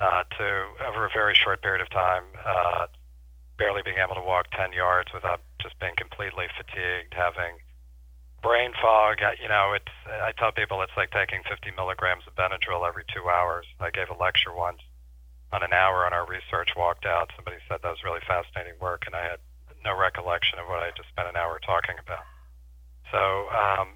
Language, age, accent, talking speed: English, 40-59, American, 200 wpm